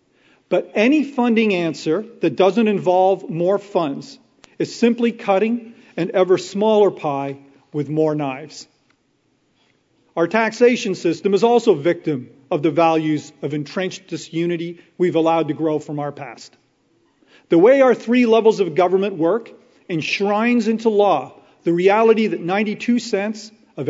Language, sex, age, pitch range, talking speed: English, male, 40-59, 165-215 Hz, 135 wpm